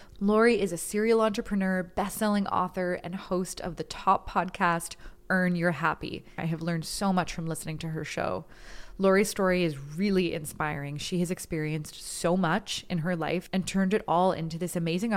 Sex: female